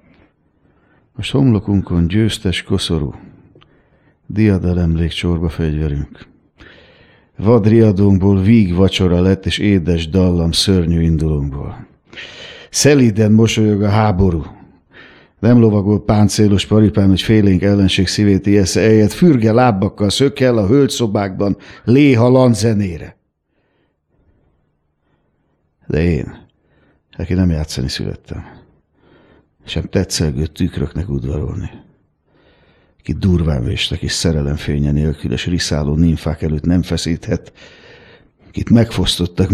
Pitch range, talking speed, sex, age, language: 90-125 Hz, 90 wpm, male, 60-79, Hungarian